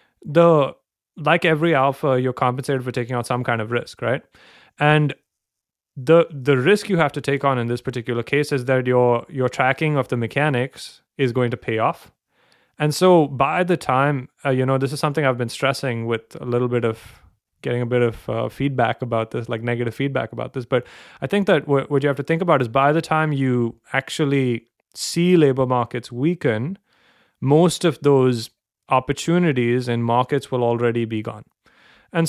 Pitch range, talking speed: 125-150 Hz, 190 wpm